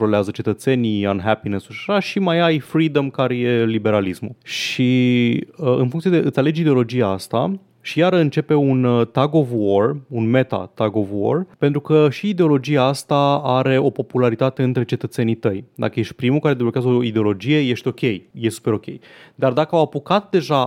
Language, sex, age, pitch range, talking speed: Romanian, male, 20-39, 110-140 Hz, 170 wpm